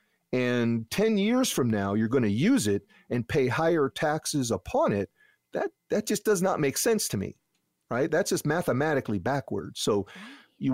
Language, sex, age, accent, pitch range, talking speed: English, male, 40-59, American, 115-165 Hz, 180 wpm